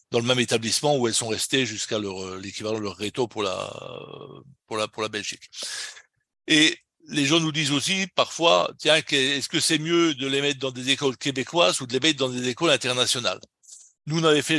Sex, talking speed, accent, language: male, 215 wpm, French, French